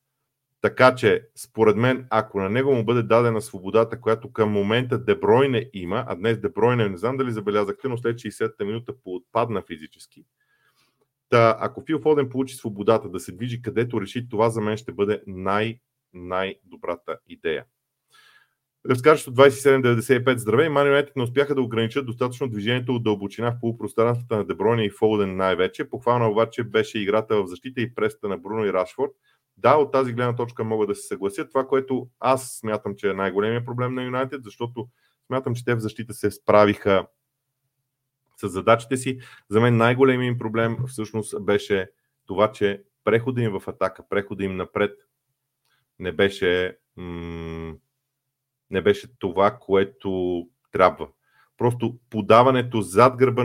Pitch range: 105-130 Hz